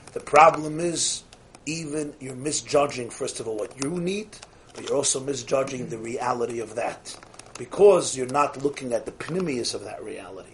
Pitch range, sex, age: 135-210 Hz, male, 40-59